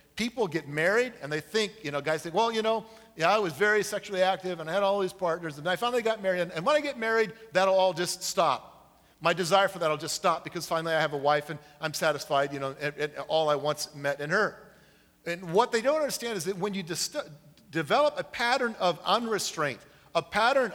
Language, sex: English, male